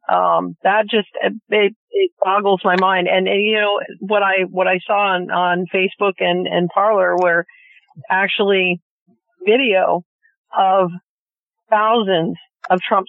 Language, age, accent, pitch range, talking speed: English, 40-59, American, 180-215 Hz, 140 wpm